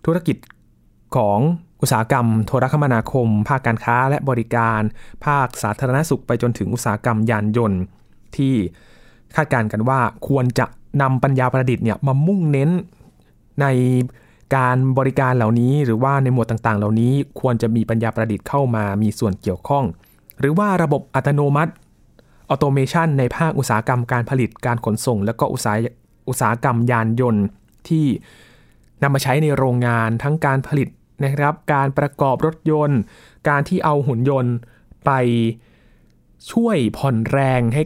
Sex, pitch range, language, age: male, 115-145 Hz, Thai, 20-39